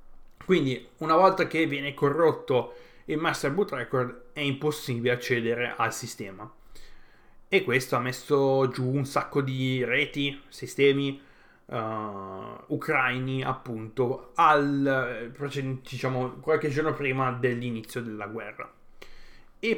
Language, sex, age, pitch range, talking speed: Italian, male, 20-39, 125-150 Hz, 110 wpm